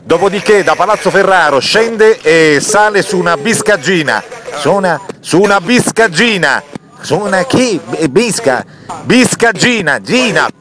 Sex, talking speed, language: male, 120 wpm, Italian